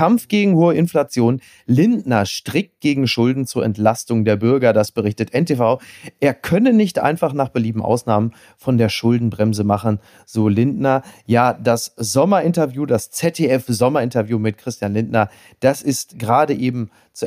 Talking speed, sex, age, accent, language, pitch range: 145 wpm, male, 40-59, German, German, 115-155 Hz